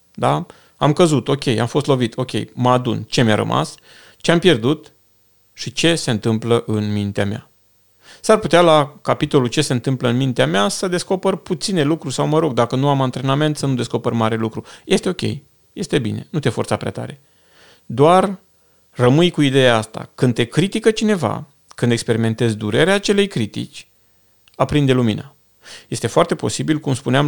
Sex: male